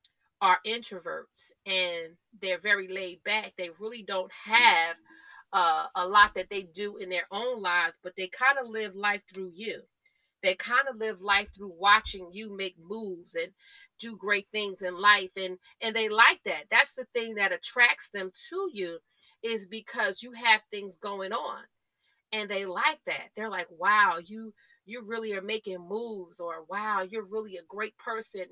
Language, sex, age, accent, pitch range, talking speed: English, female, 40-59, American, 185-230 Hz, 180 wpm